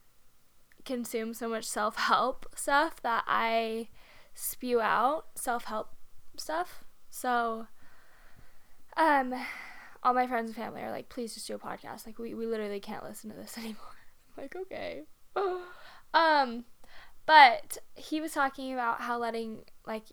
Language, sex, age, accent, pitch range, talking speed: English, female, 10-29, American, 210-265 Hz, 135 wpm